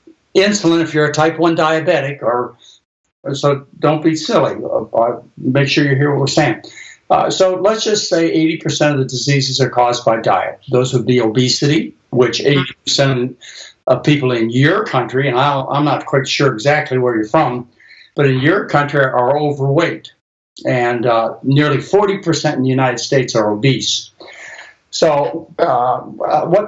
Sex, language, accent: male, English, American